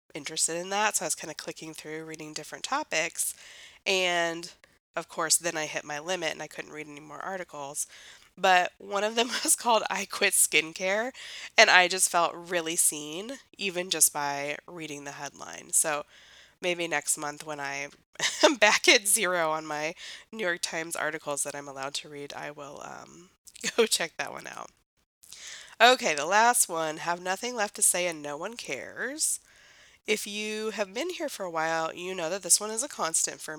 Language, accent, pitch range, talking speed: English, American, 155-210 Hz, 195 wpm